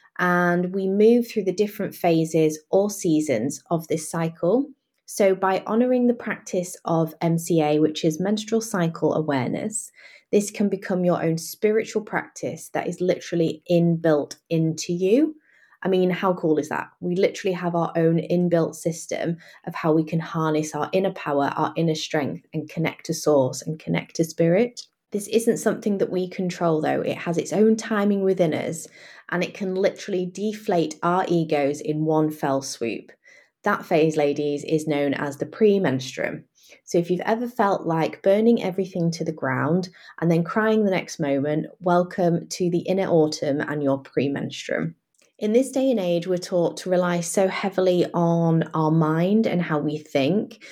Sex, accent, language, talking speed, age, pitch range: female, British, English, 170 wpm, 20-39, 160-195 Hz